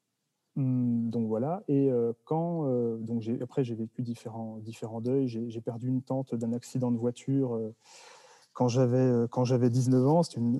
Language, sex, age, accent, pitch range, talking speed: French, male, 30-49, French, 120-150 Hz, 185 wpm